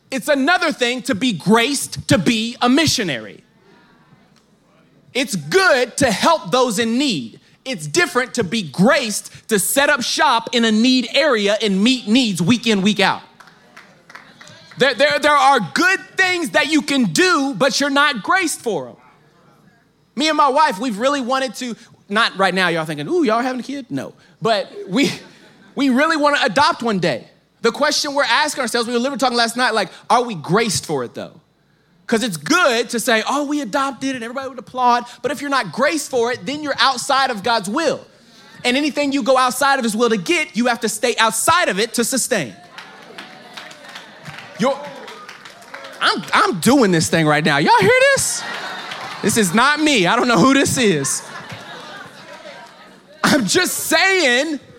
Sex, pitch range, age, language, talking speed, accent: male, 230-290 Hz, 30-49, English, 185 wpm, American